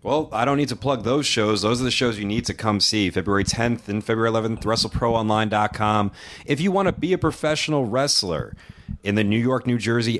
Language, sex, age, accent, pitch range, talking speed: English, male, 30-49, American, 105-130 Hz, 220 wpm